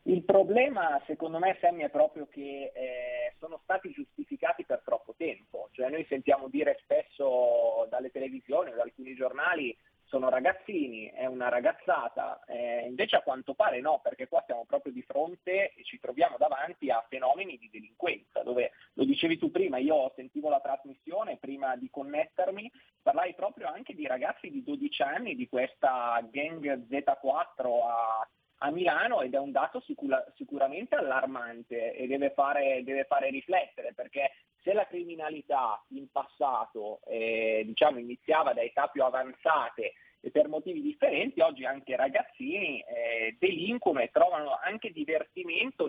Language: Italian